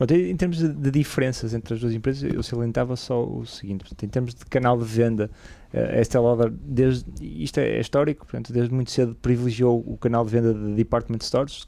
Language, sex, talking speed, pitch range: Portuguese, male, 210 wpm, 105-125 Hz